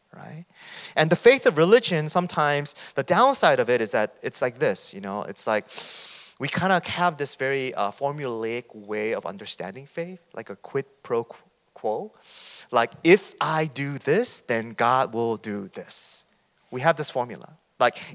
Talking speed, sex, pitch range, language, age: 170 wpm, male, 135-195 Hz, English, 30-49